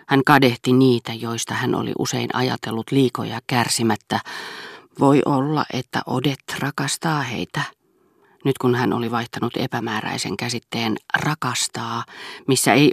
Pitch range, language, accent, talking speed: 115-140 Hz, Finnish, native, 120 wpm